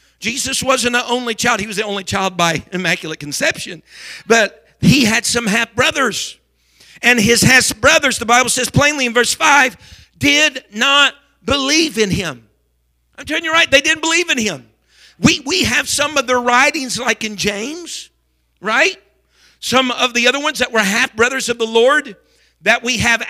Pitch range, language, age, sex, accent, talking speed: 210-275 Hz, English, 50-69, male, American, 180 wpm